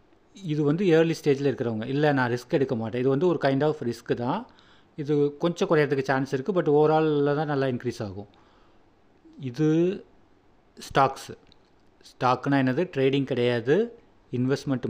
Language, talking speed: Tamil, 140 wpm